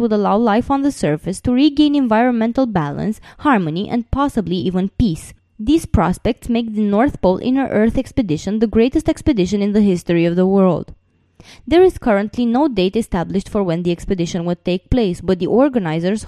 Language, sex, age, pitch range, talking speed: English, female, 20-39, 185-270 Hz, 180 wpm